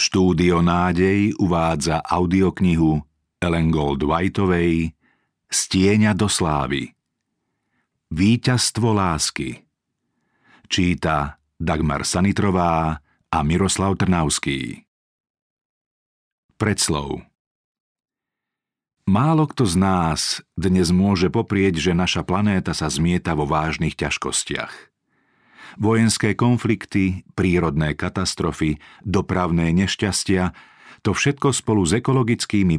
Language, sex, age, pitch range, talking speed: Slovak, male, 50-69, 85-105 Hz, 80 wpm